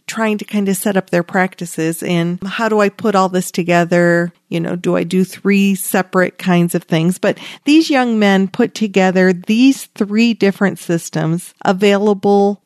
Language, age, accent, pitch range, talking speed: English, 40-59, American, 175-220 Hz, 175 wpm